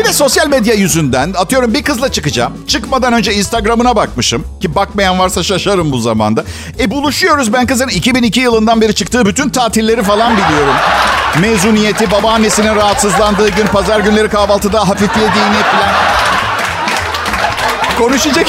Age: 50-69